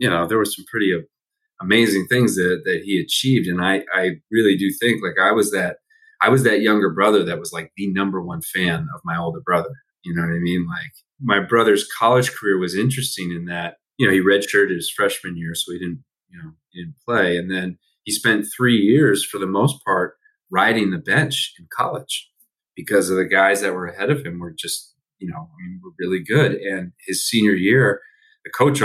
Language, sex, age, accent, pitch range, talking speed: English, male, 30-49, American, 90-110 Hz, 225 wpm